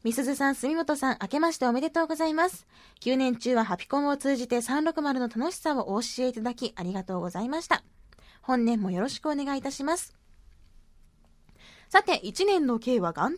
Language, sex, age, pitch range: Japanese, female, 20-39, 220-330 Hz